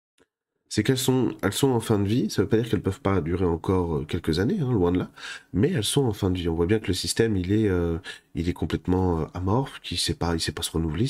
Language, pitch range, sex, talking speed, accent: French, 90-115 Hz, male, 280 wpm, French